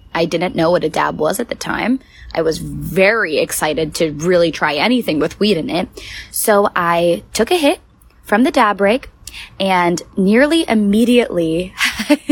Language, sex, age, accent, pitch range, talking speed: English, female, 10-29, American, 185-240 Hz, 165 wpm